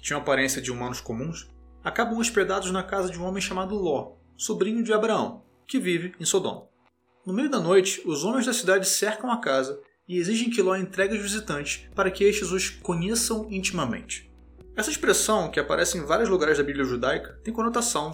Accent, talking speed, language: Brazilian, 190 wpm, Portuguese